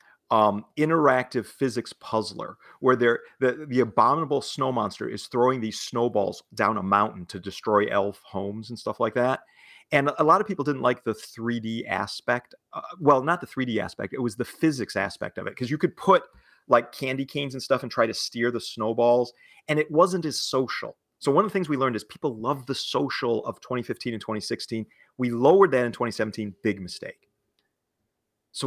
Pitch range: 105-130 Hz